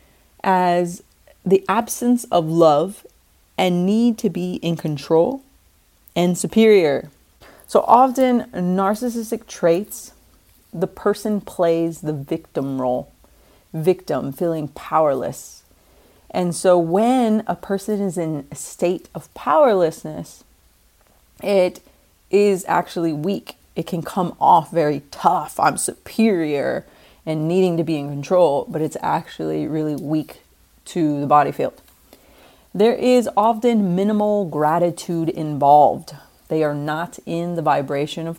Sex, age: female, 30-49